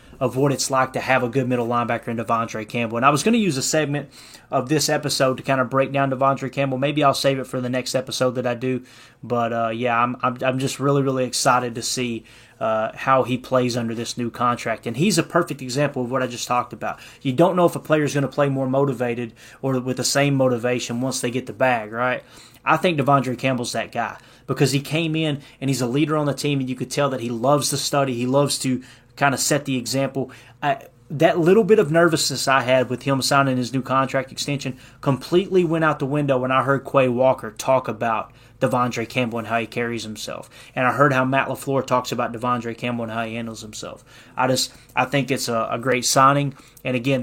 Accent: American